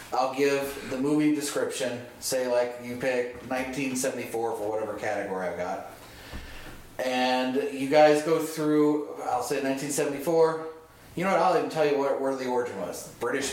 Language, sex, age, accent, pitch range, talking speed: English, male, 30-49, American, 130-165 Hz, 160 wpm